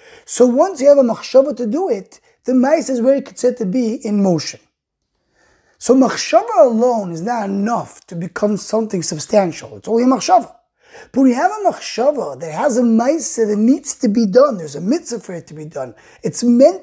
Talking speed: 205 wpm